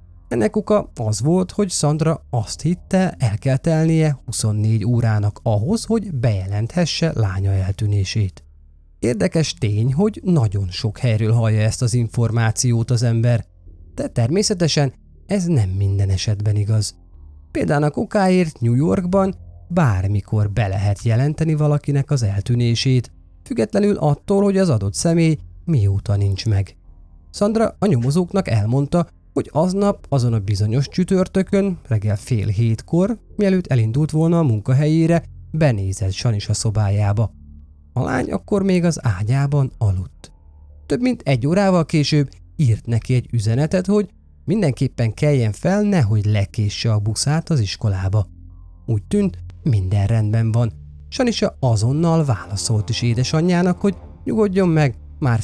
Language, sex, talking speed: Hungarian, male, 125 wpm